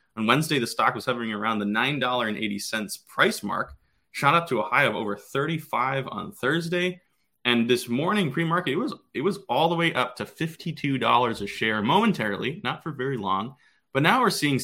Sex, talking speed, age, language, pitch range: male, 190 wpm, 20-39, English, 105-140 Hz